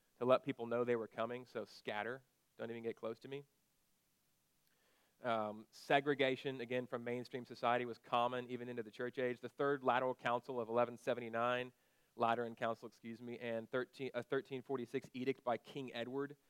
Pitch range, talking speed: 120-135 Hz, 165 wpm